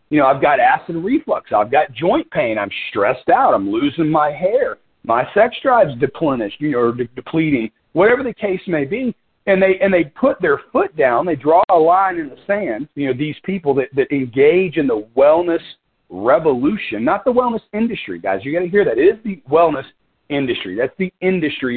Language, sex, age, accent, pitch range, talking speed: English, male, 40-59, American, 145-210 Hz, 205 wpm